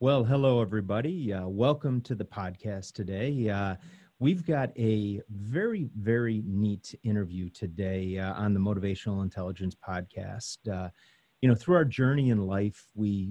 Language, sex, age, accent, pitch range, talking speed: English, male, 30-49, American, 100-125 Hz, 150 wpm